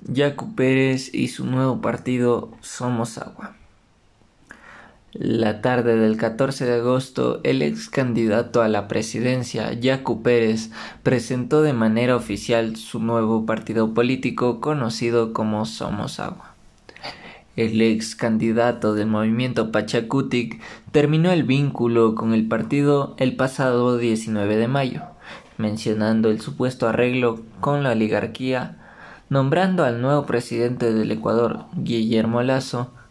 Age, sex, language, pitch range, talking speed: 20-39, male, Spanish, 115-130 Hz, 120 wpm